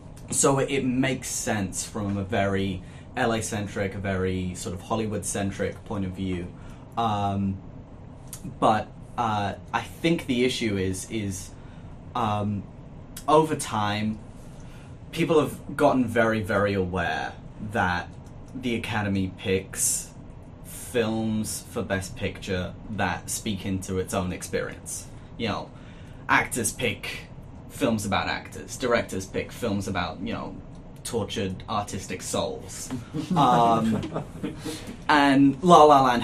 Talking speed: 120 wpm